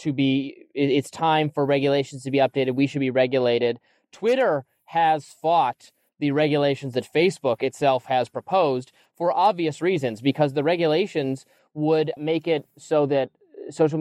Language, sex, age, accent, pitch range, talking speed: English, male, 20-39, American, 135-165 Hz, 150 wpm